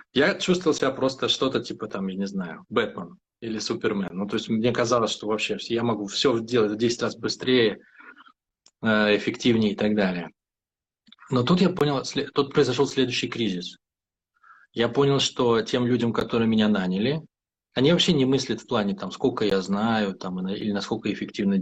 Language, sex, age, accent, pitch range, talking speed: Russian, male, 20-39, native, 110-145 Hz, 170 wpm